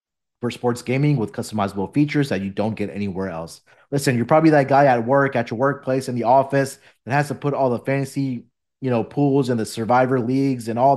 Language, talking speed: English, 225 wpm